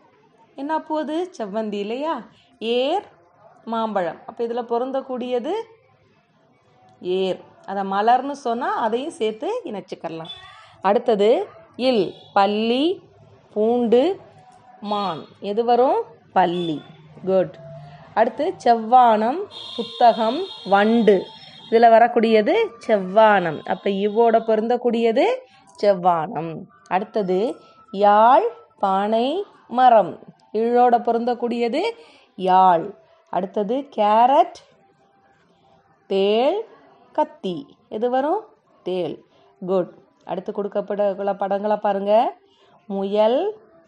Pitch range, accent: 200-255 Hz, native